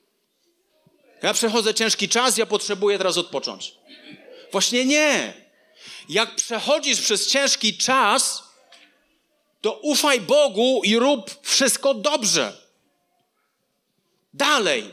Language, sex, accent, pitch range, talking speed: Polish, male, native, 200-265 Hz, 90 wpm